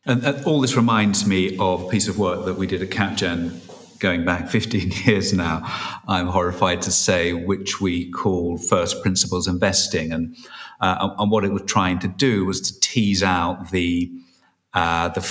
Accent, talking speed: British, 180 wpm